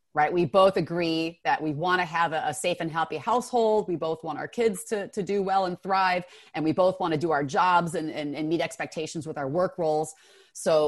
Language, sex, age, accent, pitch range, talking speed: English, female, 30-49, American, 165-225 Hz, 245 wpm